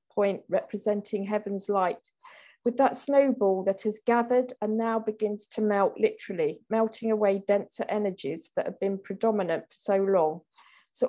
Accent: British